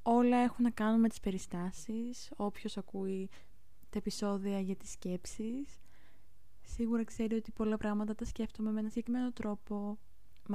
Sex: female